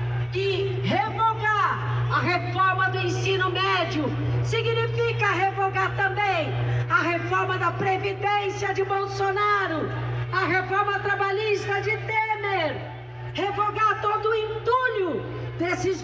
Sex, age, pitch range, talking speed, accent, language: female, 50-69, 330-415 Hz, 95 wpm, Brazilian, Portuguese